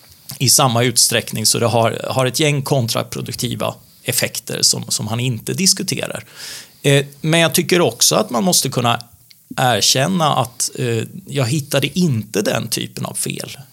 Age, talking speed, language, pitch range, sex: 30-49, 145 wpm, English, 115-150 Hz, male